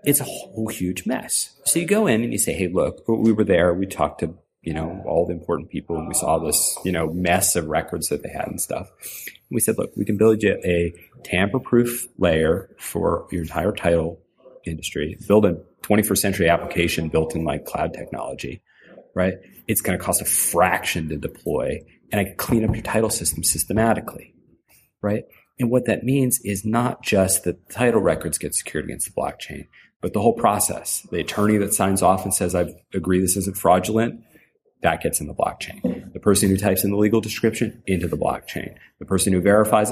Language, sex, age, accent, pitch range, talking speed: English, male, 40-59, American, 85-105 Hz, 205 wpm